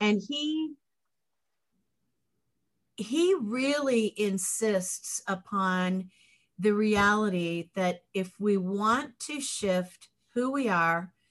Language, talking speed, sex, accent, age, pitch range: English, 90 wpm, female, American, 50-69, 185-245 Hz